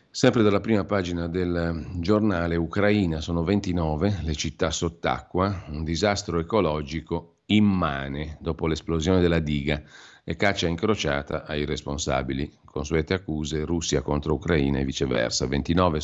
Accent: native